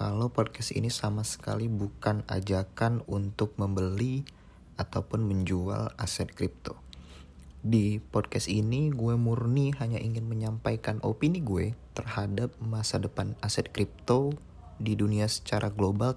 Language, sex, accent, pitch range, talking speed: Indonesian, male, native, 95-115 Hz, 120 wpm